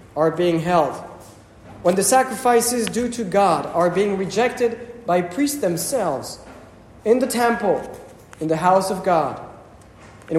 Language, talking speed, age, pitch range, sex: English, 140 wpm, 40-59, 155-215 Hz, male